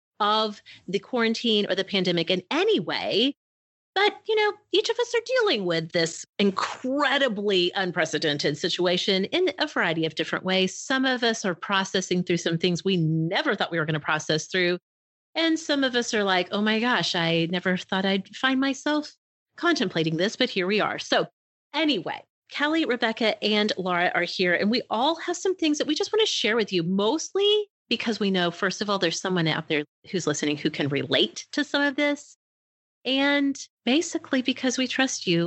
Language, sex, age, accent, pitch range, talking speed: English, female, 30-49, American, 180-285 Hz, 195 wpm